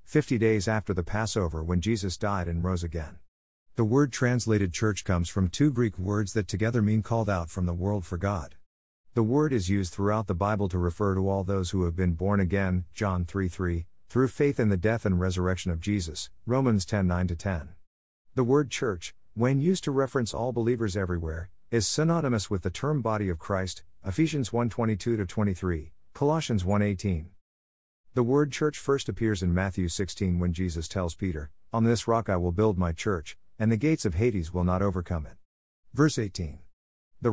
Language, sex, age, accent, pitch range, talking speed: English, male, 50-69, American, 90-115 Hz, 190 wpm